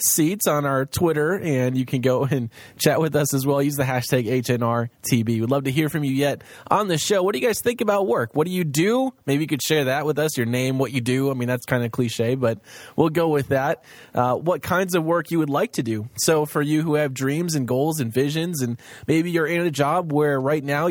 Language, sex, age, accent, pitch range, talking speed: English, male, 20-39, American, 125-160 Hz, 260 wpm